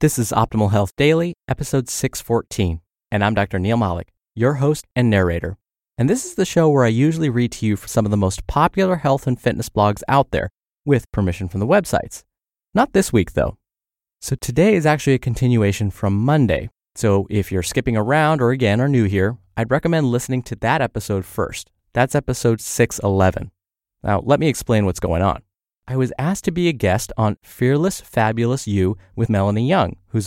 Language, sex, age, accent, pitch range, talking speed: English, male, 20-39, American, 100-135 Hz, 195 wpm